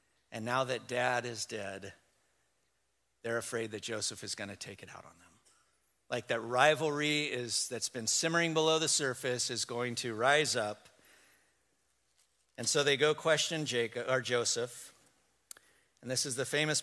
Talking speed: 160 wpm